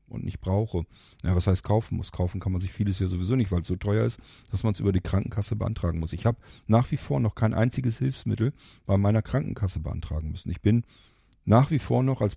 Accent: German